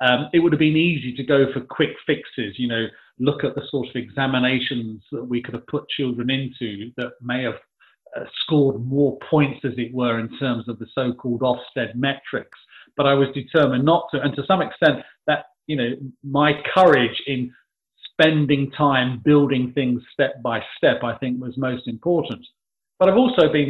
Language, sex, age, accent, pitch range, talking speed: English, male, 40-59, British, 120-150 Hz, 190 wpm